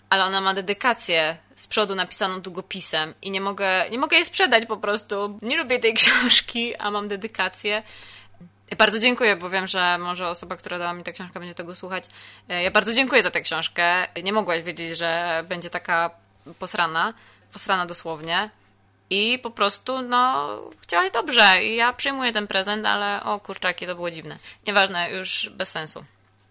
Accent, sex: native, female